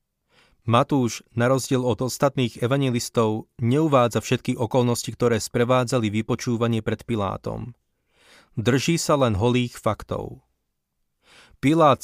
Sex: male